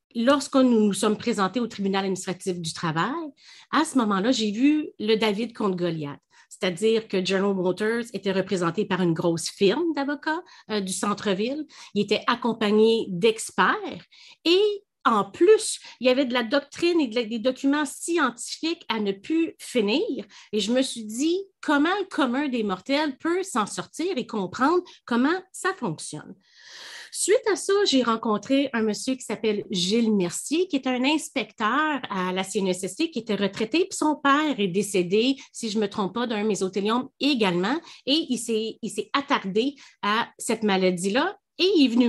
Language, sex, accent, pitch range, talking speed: French, female, Canadian, 210-300 Hz, 175 wpm